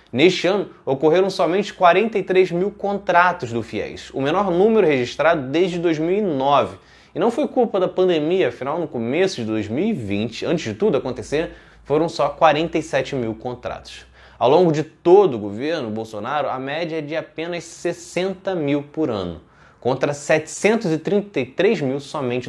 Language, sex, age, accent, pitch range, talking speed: Portuguese, male, 20-39, Brazilian, 125-185 Hz, 145 wpm